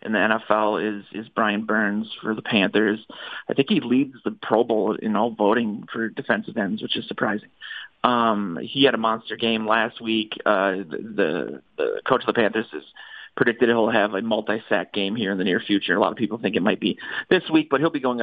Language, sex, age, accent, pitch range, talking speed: English, male, 40-59, American, 110-120 Hz, 225 wpm